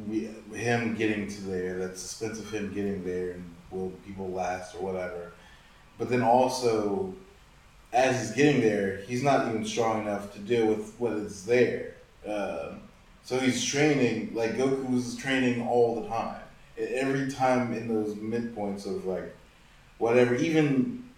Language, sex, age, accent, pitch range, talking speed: English, male, 20-39, American, 90-120 Hz, 155 wpm